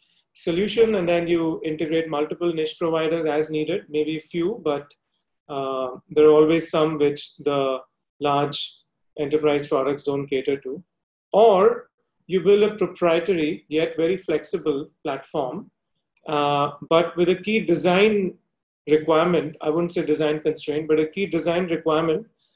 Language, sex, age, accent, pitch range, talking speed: English, male, 30-49, Indian, 150-180 Hz, 140 wpm